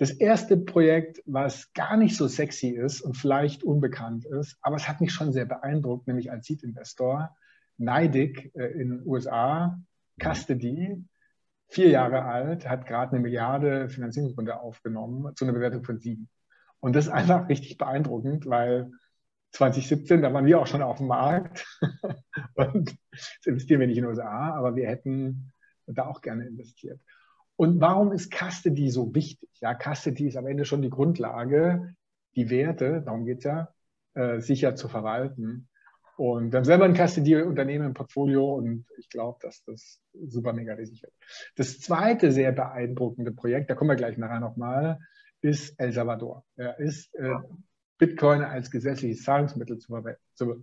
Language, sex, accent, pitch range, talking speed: German, male, German, 125-160 Hz, 160 wpm